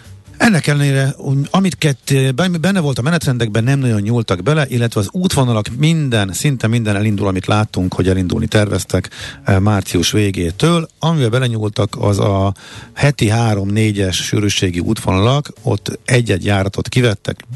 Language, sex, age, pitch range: Hungarian, male, 50-69, 95-125 Hz